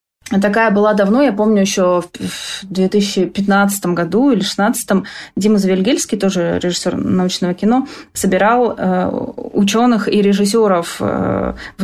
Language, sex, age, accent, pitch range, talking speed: Russian, female, 20-39, native, 185-230 Hz, 110 wpm